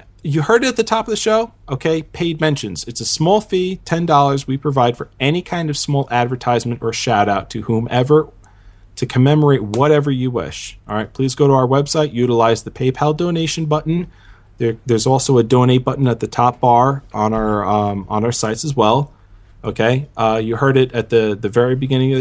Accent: American